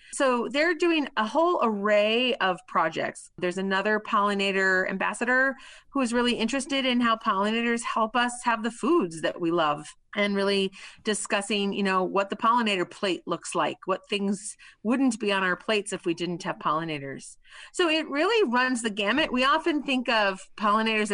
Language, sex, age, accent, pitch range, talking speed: English, female, 30-49, American, 185-240 Hz, 175 wpm